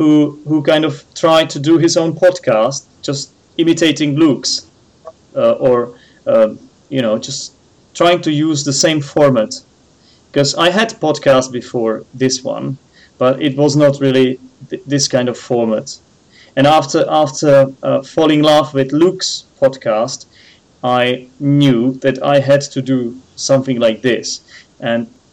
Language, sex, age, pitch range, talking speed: English, male, 30-49, 130-165 Hz, 150 wpm